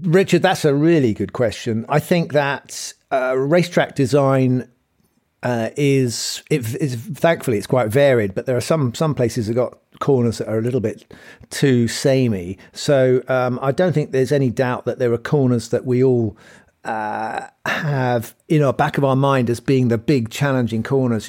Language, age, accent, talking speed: English, 50-69, British, 185 wpm